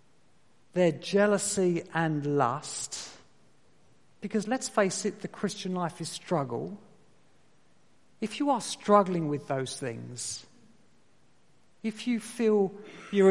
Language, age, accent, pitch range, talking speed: English, 50-69, British, 160-220 Hz, 110 wpm